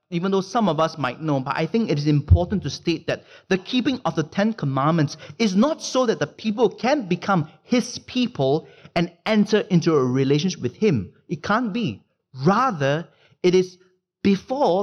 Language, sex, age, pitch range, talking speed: English, male, 30-49, 150-205 Hz, 185 wpm